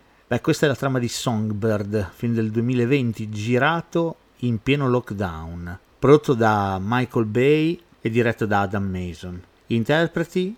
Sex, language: male, Italian